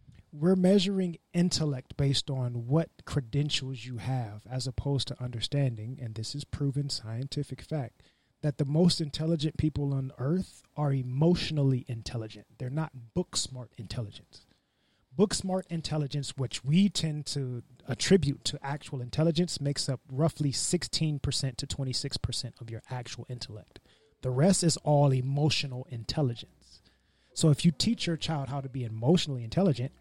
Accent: American